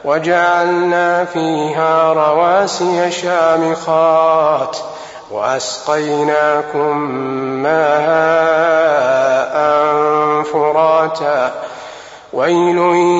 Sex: male